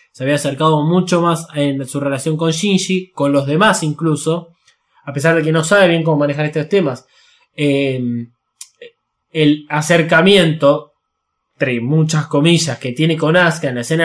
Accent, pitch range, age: Argentinian, 140-170 Hz, 20-39